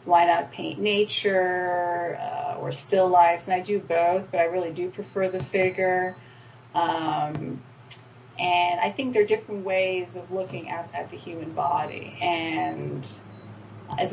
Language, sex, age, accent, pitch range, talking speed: English, female, 30-49, American, 125-180 Hz, 155 wpm